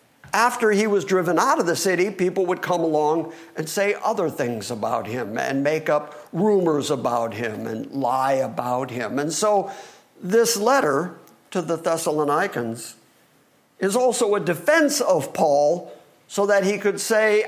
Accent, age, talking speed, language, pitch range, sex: American, 50-69, 160 wpm, English, 155-230 Hz, male